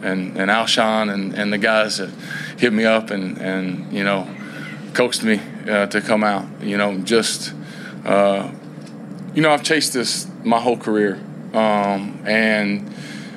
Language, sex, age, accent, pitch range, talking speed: English, male, 20-39, American, 100-115 Hz, 155 wpm